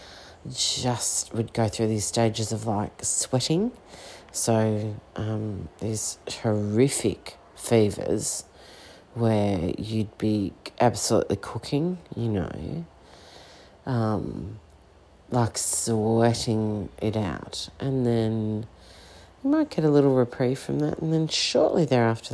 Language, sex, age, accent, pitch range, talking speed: English, female, 40-59, Australian, 100-115 Hz, 105 wpm